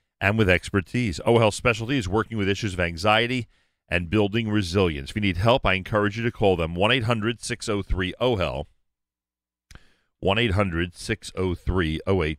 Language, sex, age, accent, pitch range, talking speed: English, male, 40-59, American, 90-120 Hz, 145 wpm